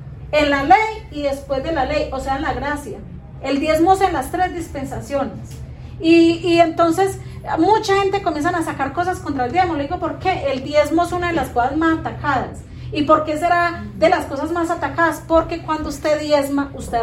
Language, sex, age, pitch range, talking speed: Spanish, female, 40-59, 280-360 Hz, 210 wpm